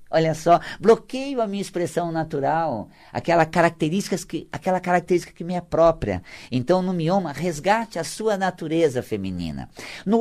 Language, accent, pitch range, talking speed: Portuguese, Brazilian, 115-185 Hz, 130 wpm